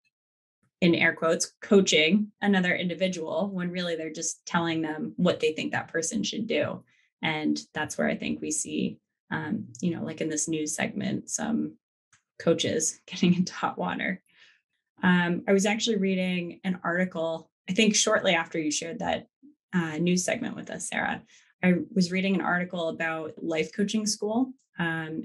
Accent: American